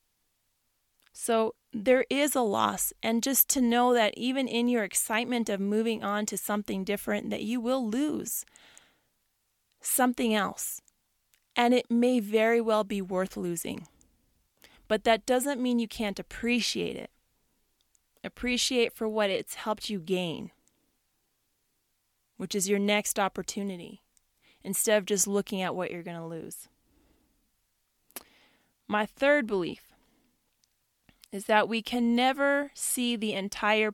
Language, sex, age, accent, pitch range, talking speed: English, female, 30-49, American, 190-240 Hz, 135 wpm